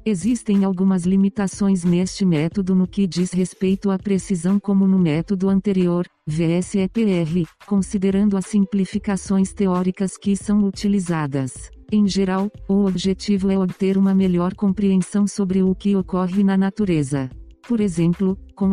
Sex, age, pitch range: female, 40-59, 180-200 Hz